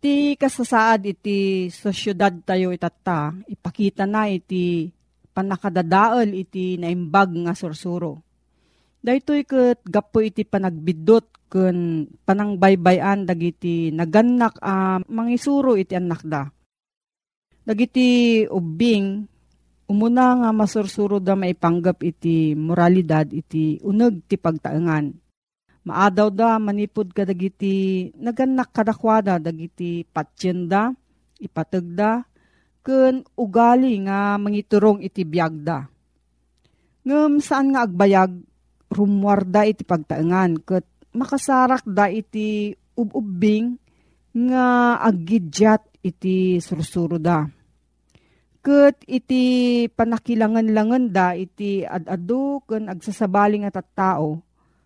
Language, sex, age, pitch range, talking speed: Filipino, female, 40-59, 175-225 Hz, 95 wpm